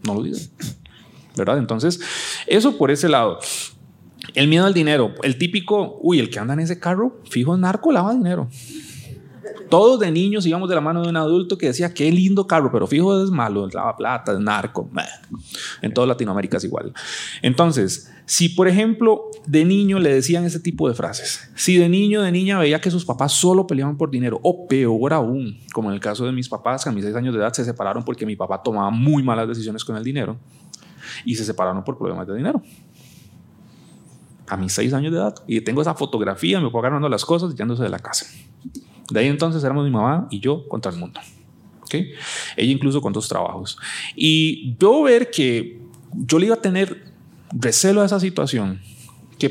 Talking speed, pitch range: 200 wpm, 120-180 Hz